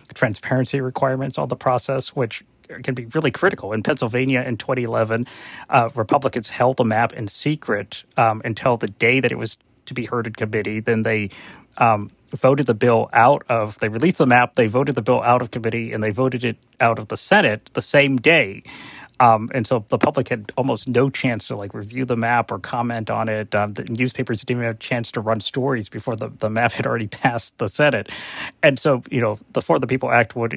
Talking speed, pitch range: 220 wpm, 115-130 Hz